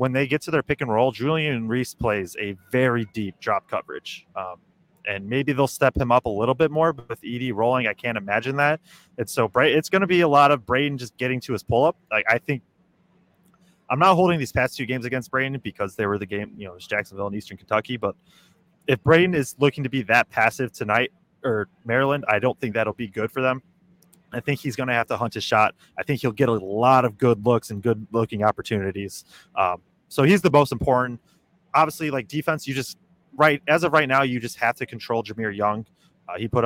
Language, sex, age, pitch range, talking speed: English, male, 30-49, 110-135 Hz, 240 wpm